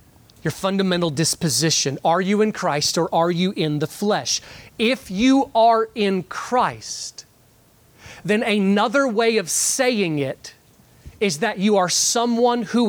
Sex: male